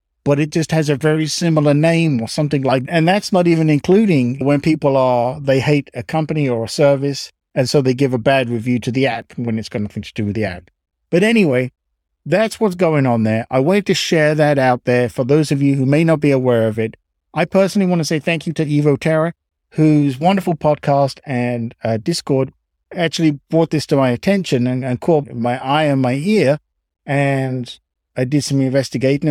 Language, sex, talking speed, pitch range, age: English, male, 215 wpm, 125-165 Hz, 50-69